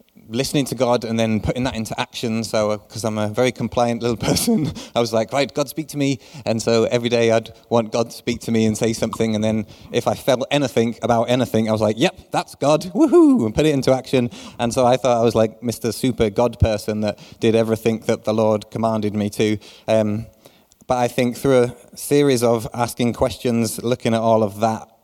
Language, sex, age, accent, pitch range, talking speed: English, male, 20-39, British, 110-130 Hz, 225 wpm